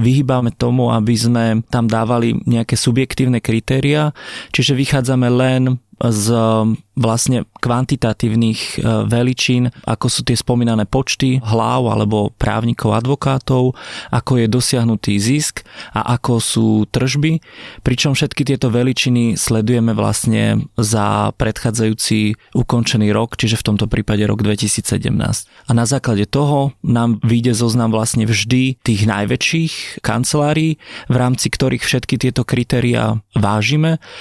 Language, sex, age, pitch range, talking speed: Slovak, male, 30-49, 110-125 Hz, 120 wpm